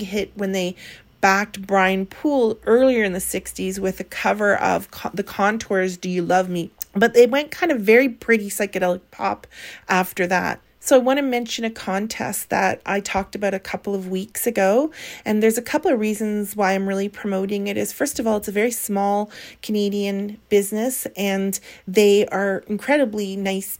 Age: 40-59